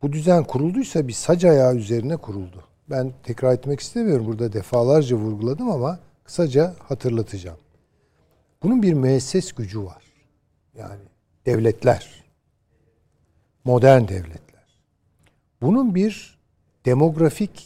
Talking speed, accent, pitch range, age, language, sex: 100 wpm, native, 115-175 Hz, 60-79, Turkish, male